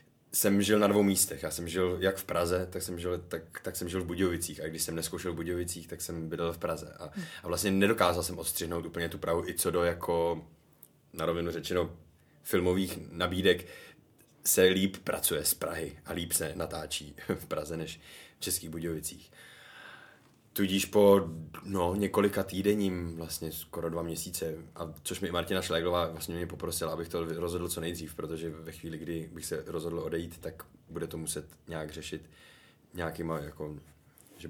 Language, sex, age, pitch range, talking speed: Czech, male, 20-39, 85-95 Hz, 175 wpm